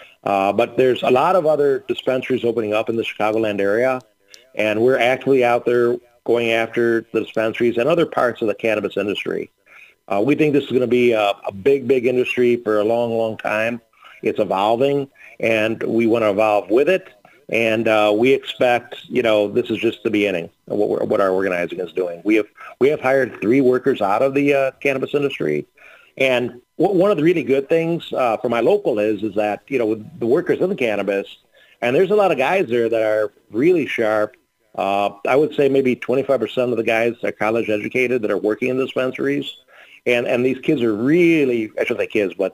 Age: 40-59